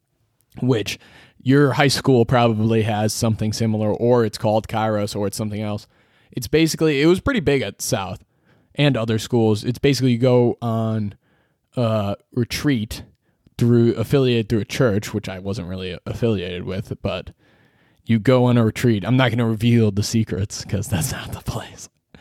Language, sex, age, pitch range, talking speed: English, male, 20-39, 110-135 Hz, 170 wpm